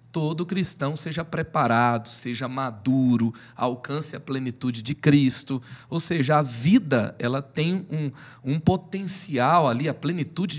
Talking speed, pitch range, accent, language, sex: 125 wpm, 135-165 Hz, Brazilian, Portuguese, male